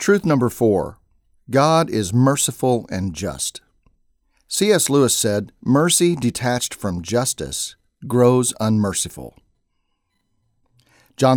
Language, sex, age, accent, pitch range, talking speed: English, male, 50-69, American, 105-135 Hz, 95 wpm